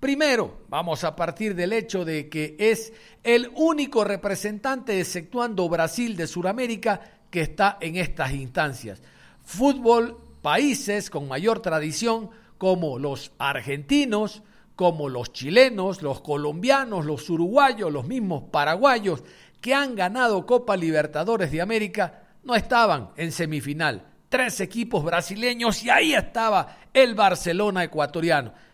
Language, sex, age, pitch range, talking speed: Spanish, male, 50-69, 165-230 Hz, 125 wpm